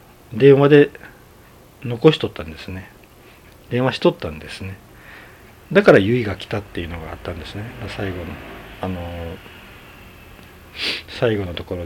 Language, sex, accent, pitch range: Japanese, male, native, 85-115 Hz